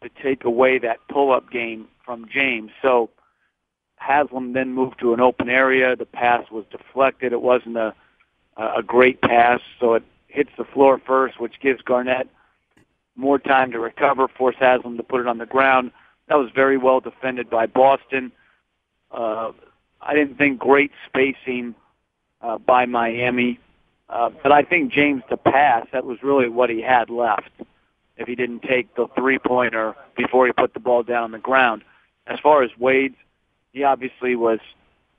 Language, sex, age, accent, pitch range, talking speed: English, male, 50-69, American, 120-135 Hz, 170 wpm